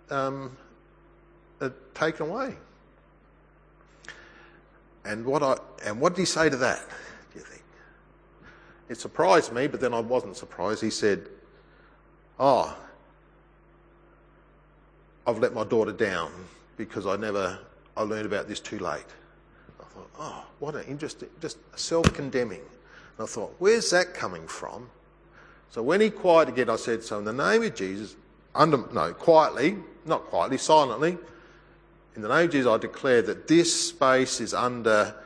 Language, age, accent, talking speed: English, 50-69, Australian, 150 wpm